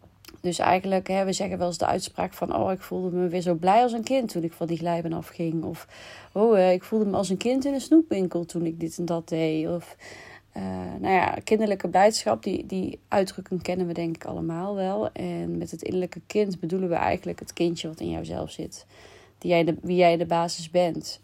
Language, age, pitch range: Dutch, 30-49, 165-185 Hz